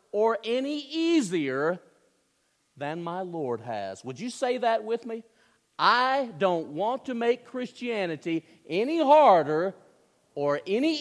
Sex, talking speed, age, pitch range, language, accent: male, 125 wpm, 50-69, 155-240 Hz, English, American